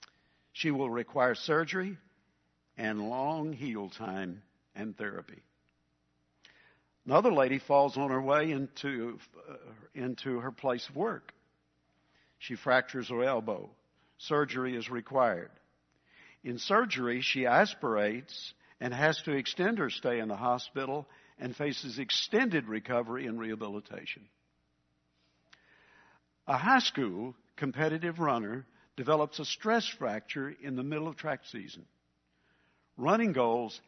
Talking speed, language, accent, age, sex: 115 wpm, English, American, 60-79, male